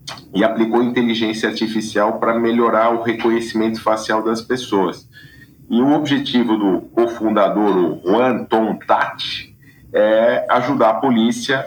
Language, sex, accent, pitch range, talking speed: Portuguese, male, Brazilian, 100-120 Hz, 120 wpm